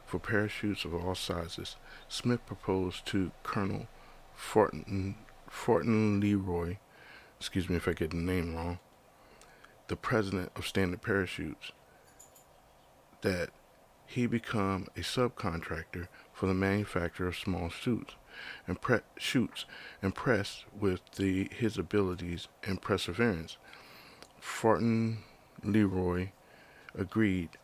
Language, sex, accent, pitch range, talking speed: English, male, American, 90-105 Hz, 100 wpm